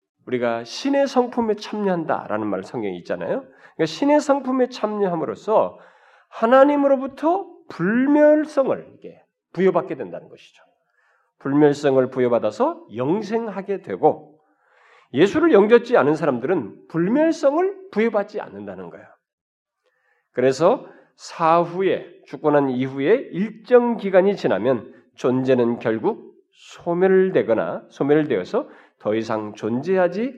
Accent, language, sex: native, Korean, male